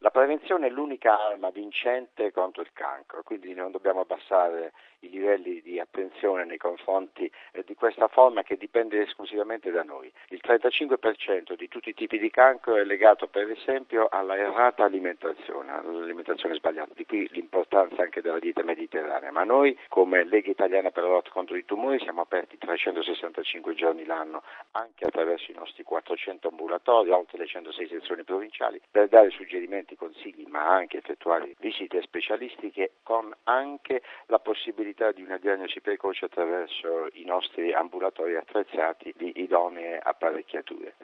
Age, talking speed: 50-69, 150 wpm